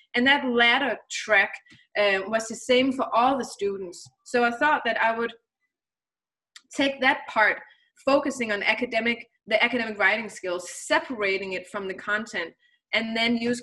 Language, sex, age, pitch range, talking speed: Danish, female, 20-39, 205-270 Hz, 160 wpm